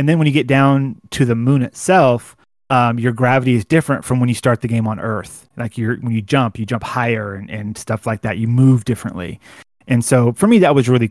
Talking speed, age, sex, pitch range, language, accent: 250 wpm, 30-49, male, 115-140 Hz, English, American